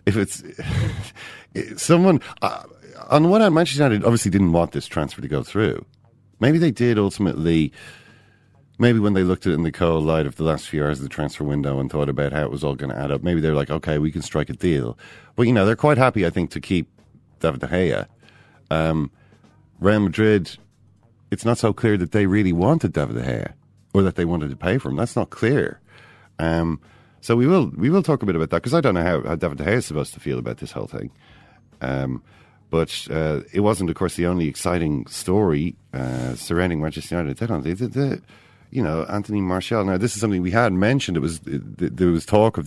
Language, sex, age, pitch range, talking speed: English, male, 40-59, 80-110 Hz, 225 wpm